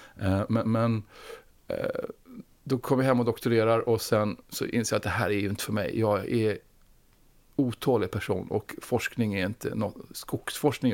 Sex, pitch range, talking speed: male, 105-125 Hz, 170 wpm